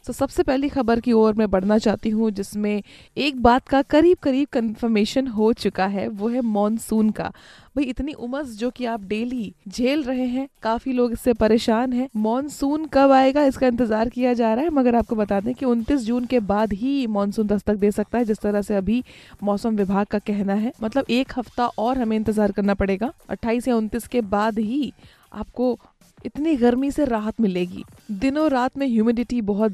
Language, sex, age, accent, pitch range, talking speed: Hindi, female, 20-39, native, 215-255 Hz, 200 wpm